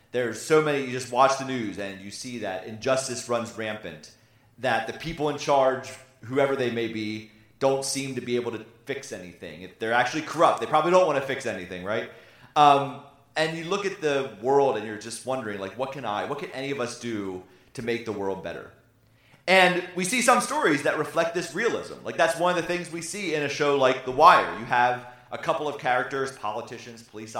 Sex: male